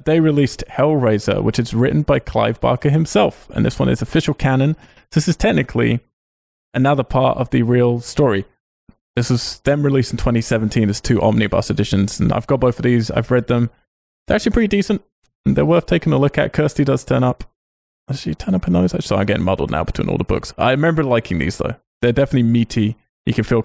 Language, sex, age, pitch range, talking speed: English, male, 20-39, 100-135 Hz, 215 wpm